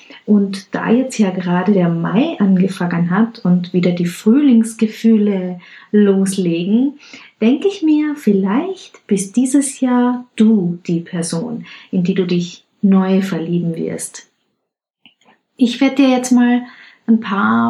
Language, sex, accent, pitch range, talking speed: German, female, German, 195-245 Hz, 130 wpm